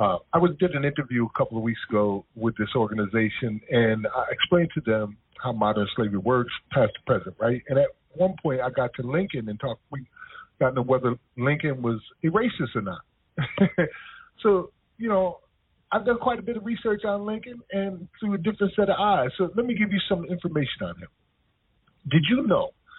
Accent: American